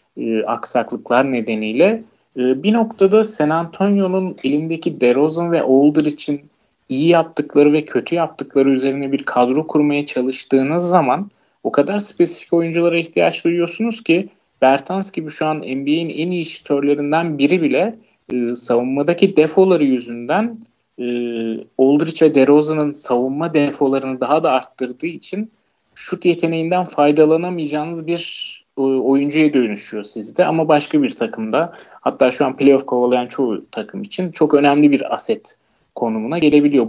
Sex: male